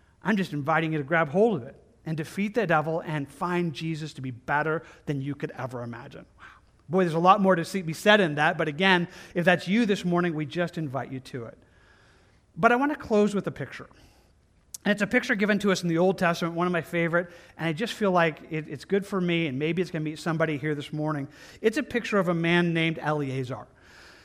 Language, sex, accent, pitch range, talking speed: English, male, American, 150-185 Hz, 250 wpm